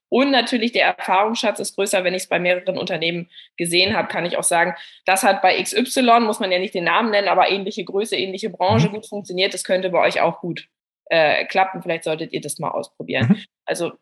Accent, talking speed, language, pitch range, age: German, 220 wpm, German, 185-240 Hz, 20-39